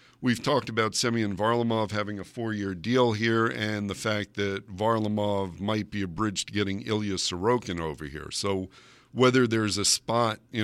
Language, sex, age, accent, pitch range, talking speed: English, male, 50-69, American, 100-120 Hz, 165 wpm